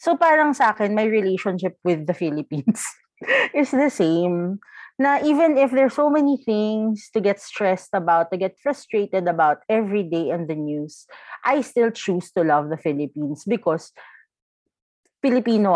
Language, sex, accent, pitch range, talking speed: Filipino, female, native, 175-255 Hz, 155 wpm